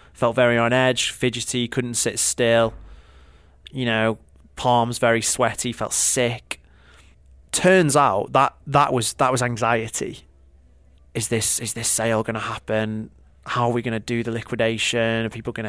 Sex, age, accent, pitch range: male, 30-49, British, 110-130 Hz